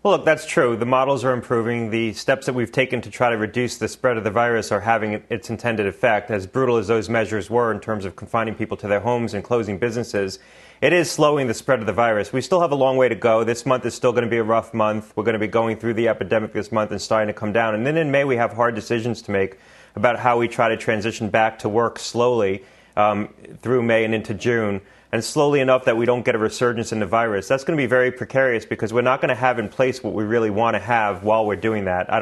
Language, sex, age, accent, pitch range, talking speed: English, male, 30-49, American, 110-125 Hz, 275 wpm